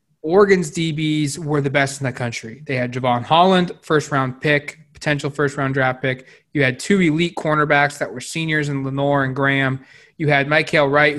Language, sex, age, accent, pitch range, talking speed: English, male, 20-39, American, 140-160 Hz, 180 wpm